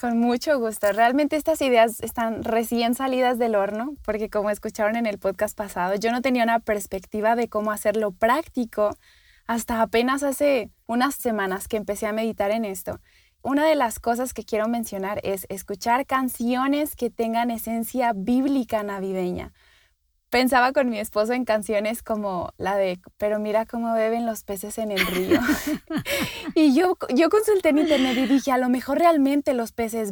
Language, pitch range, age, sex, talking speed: Spanish, 220-275 Hz, 20-39, female, 170 wpm